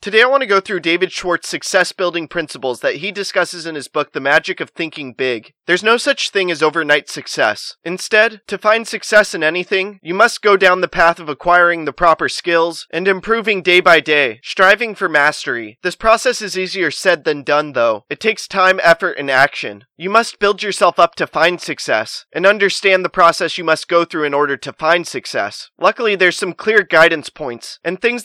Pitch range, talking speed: 160-195 Hz, 205 wpm